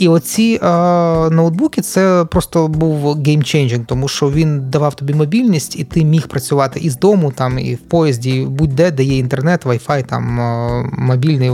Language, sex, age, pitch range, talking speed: Ukrainian, male, 20-39, 130-160 Hz, 170 wpm